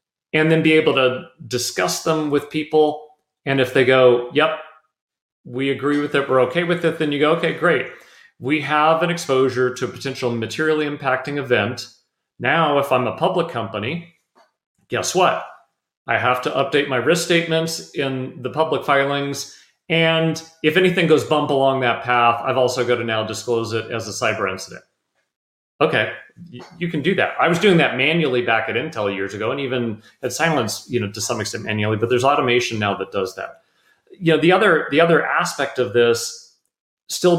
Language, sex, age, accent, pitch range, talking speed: English, male, 40-59, American, 125-155 Hz, 190 wpm